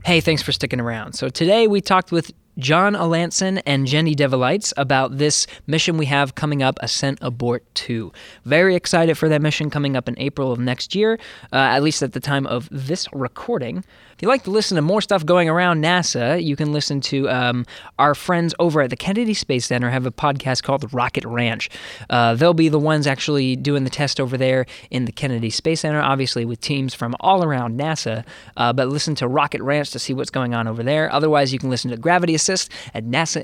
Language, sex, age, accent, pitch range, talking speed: English, male, 20-39, American, 125-160 Hz, 215 wpm